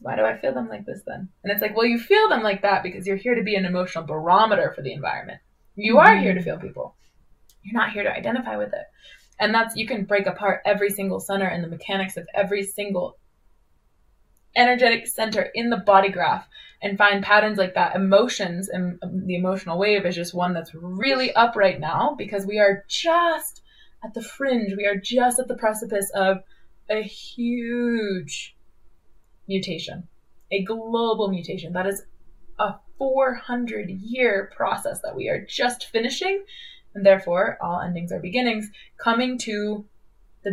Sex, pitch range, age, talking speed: female, 180-220 Hz, 20-39, 180 wpm